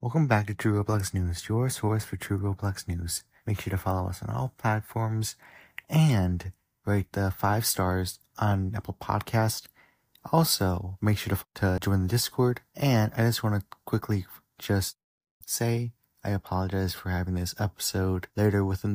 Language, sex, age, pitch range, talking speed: English, male, 30-49, 95-115 Hz, 165 wpm